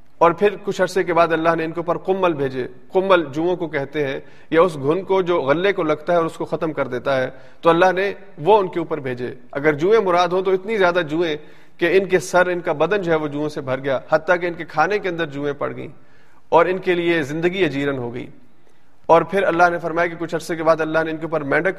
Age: 40-59